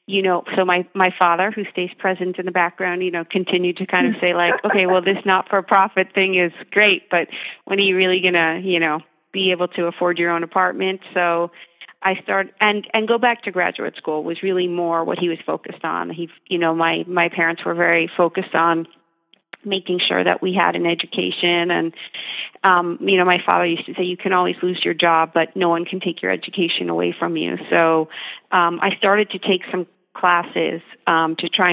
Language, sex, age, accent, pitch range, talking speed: English, female, 40-59, American, 165-185 Hz, 215 wpm